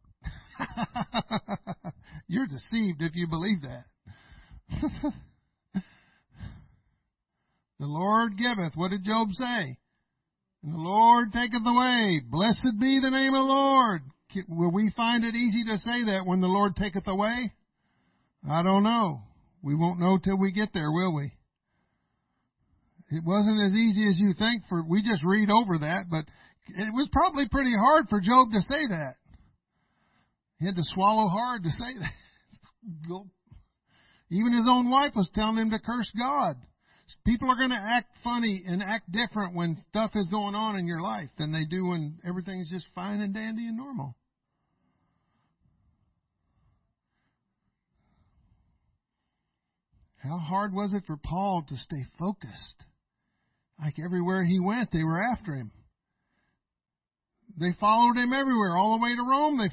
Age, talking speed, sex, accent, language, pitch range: 60-79, 145 wpm, male, American, English, 170-230 Hz